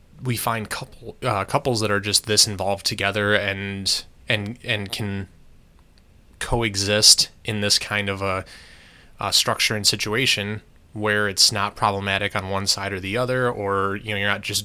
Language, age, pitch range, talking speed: English, 20-39, 95-115 Hz, 170 wpm